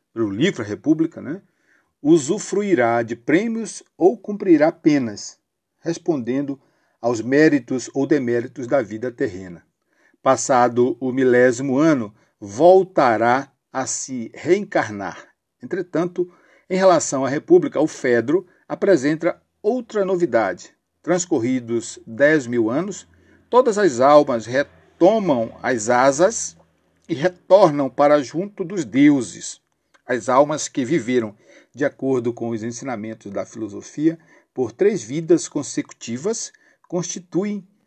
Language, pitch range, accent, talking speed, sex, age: Portuguese, 120-185 Hz, Brazilian, 110 wpm, male, 60-79